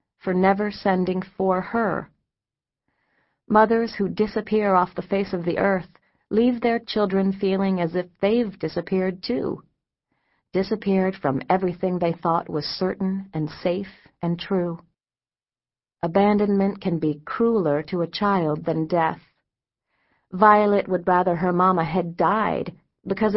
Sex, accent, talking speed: female, American, 130 wpm